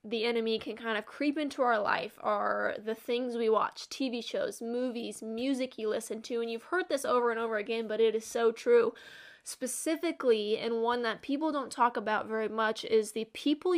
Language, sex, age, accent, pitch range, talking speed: English, female, 10-29, American, 225-270 Hz, 205 wpm